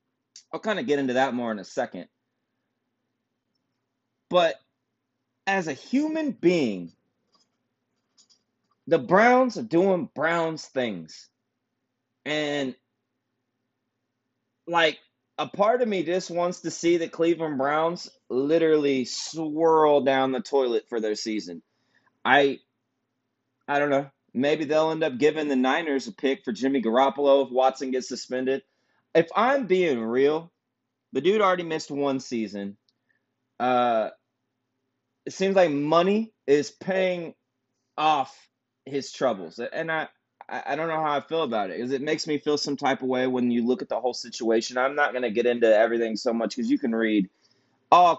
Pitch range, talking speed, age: 125-170 Hz, 150 wpm, 30-49